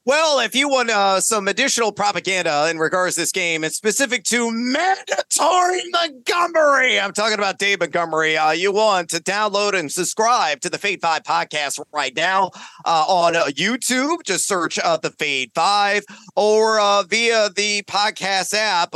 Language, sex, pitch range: English, male, 170-215 Hz